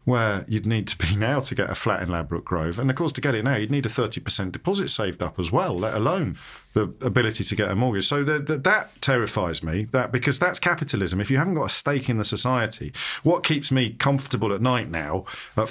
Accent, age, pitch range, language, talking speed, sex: British, 40-59, 105-150 Hz, English, 245 wpm, male